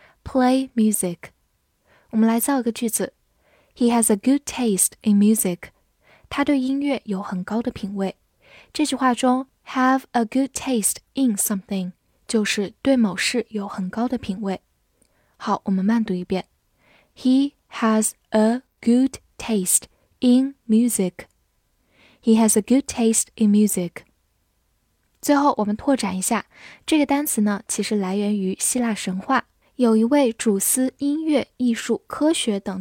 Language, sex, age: Chinese, female, 10-29